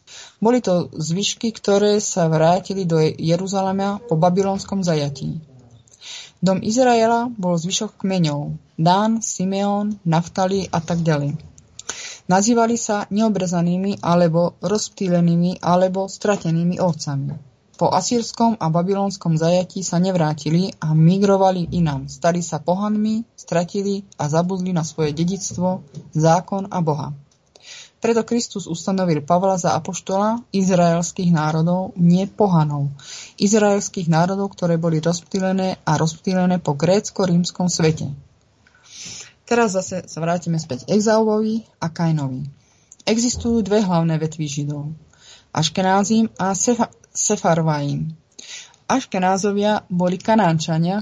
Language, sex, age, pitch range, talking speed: Czech, female, 20-39, 160-200 Hz, 110 wpm